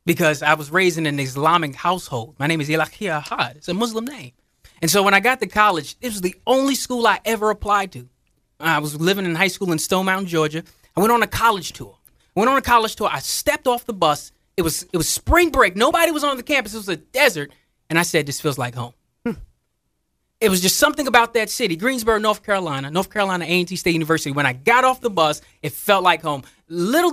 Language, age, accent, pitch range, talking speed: English, 20-39, American, 155-230 Hz, 240 wpm